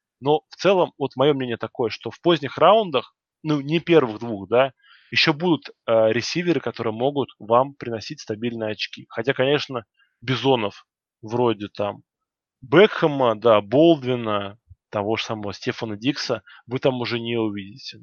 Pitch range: 110-135 Hz